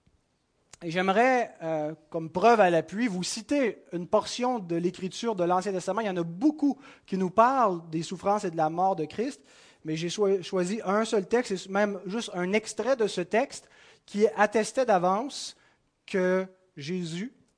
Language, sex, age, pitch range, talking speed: French, male, 30-49, 165-220 Hz, 175 wpm